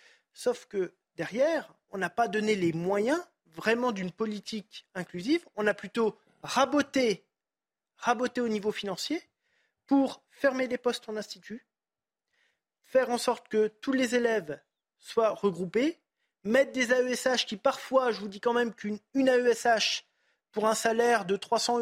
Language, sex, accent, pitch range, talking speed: French, male, French, 205-255 Hz, 150 wpm